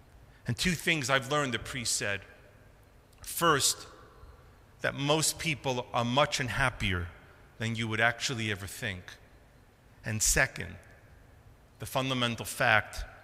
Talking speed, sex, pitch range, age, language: 120 wpm, male, 105-140 Hz, 40-59, English